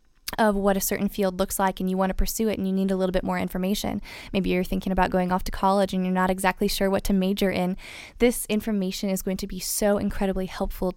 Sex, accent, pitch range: female, American, 190-215 Hz